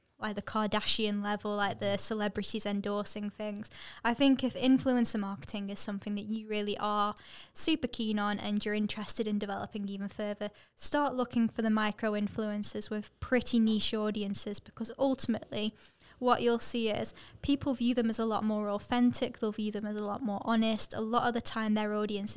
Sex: female